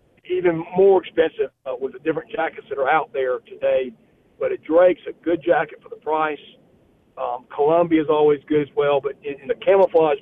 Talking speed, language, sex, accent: 200 wpm, English, male, American